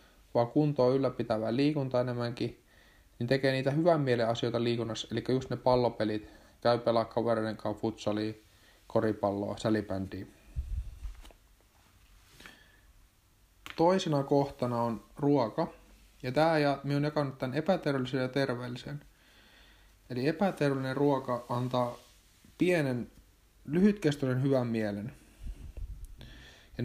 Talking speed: 100 wpm